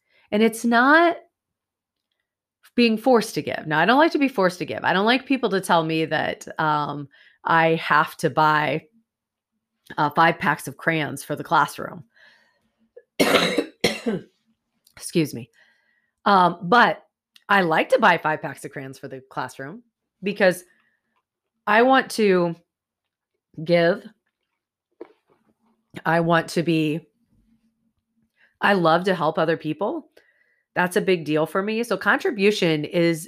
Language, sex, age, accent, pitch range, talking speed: English, female, 30-49, American, 155-220 Hz, 135 wpm